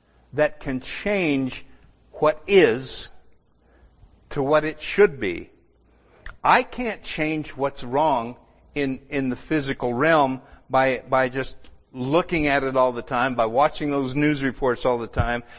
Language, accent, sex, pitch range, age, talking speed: English, American, male, 130-170 Hz, 60-79, 140 wpm